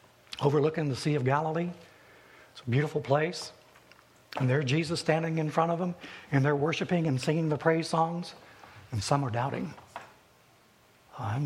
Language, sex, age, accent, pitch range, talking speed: English, male, 60-79, American, 130-170 Hz, 155 wpm